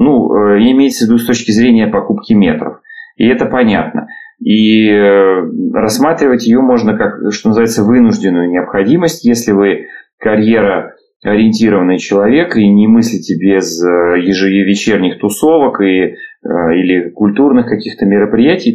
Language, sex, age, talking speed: Russian, male, 30-49, 120 wpm